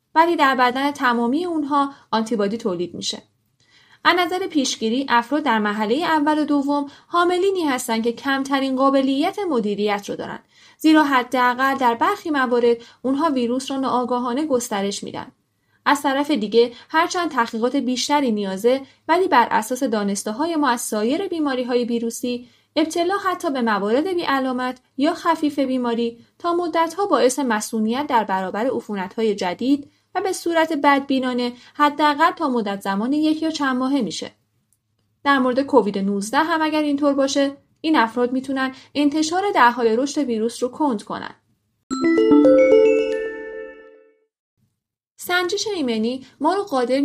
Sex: female